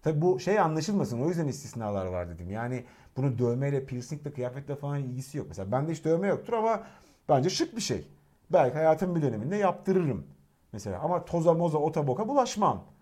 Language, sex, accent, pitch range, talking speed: Turkish, male, native, 130-210 Hz, 175 wpm